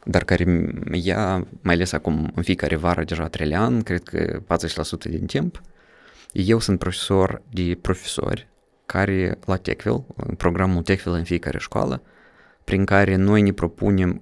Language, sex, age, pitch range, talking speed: Romanian, male, 20-39, 85-110 Hz, 150 wpm